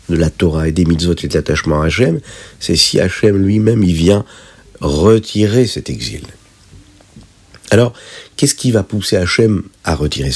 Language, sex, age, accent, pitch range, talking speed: French, male, 50-69, French, 85-110 Hz, 160 wpm